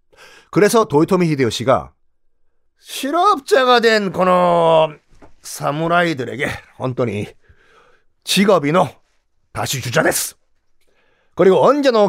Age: 40-59